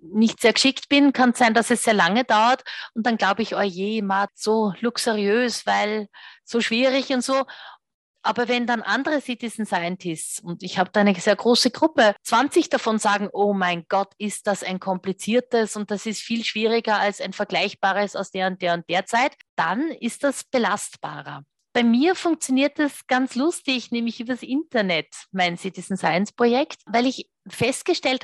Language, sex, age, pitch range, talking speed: German, female, 30-49, 200-255 Hz, 180 wpm